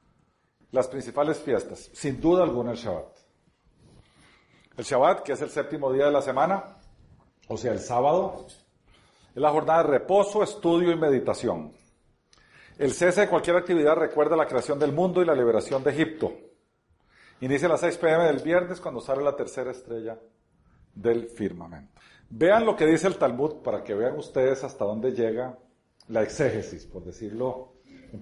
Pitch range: 130-185 Hz